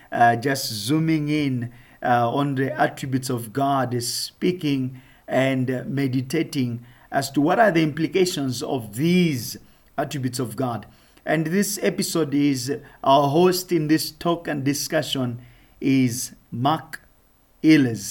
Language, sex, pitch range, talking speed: English, male, 125-150 Hz, 135 wpm